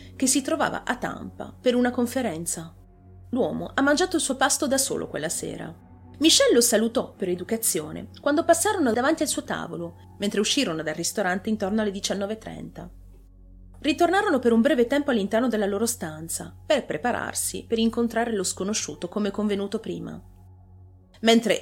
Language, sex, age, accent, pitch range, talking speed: Italian, female, 30-49, native, 160-240 Hz, 155 wpm